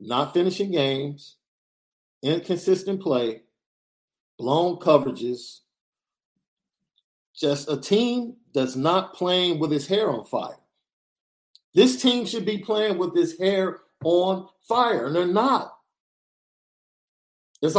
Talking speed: 110 wpm